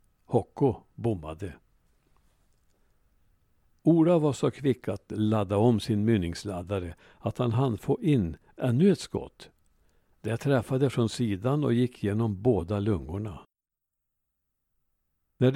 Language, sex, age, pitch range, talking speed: Swedish, male, 60-79, 100-130 Hz, 110 wpm